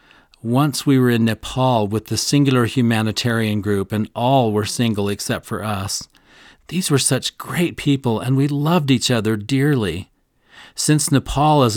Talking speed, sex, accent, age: 160 wpm, male, American, 40-59